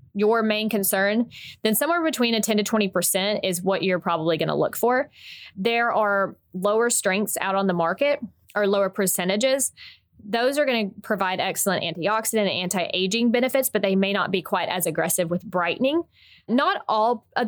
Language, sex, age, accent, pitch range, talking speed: English, female, 20-39, American, 180-215 Hz, 180 wpm